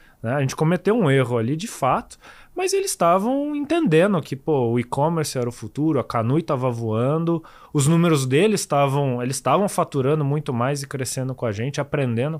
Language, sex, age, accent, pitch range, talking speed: Portuguese, male, 20-39, Brazilian, 120-165 Hz, 180 wpm